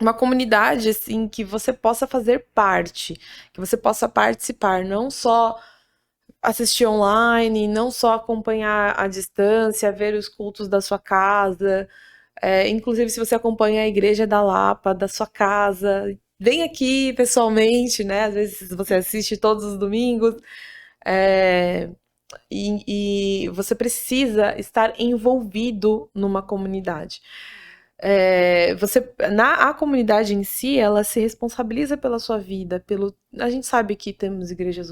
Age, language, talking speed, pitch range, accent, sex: 20-39, Portuguese, 135 wpm, 195-235 Hz, Brazilian, female